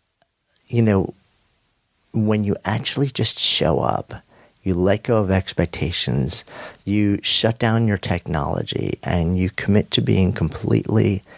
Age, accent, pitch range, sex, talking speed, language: 50-69, American, 85-110 Hz, male, 125 wpm, English